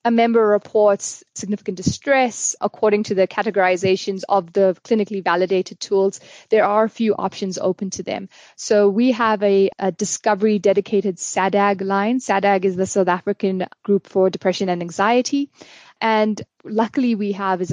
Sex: female